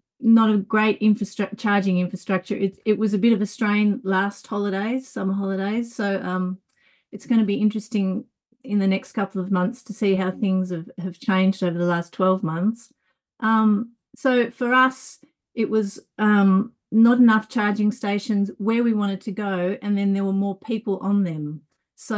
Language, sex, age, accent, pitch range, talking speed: English, female, 30-49, Australian, 195-225 Hz, 185 wpm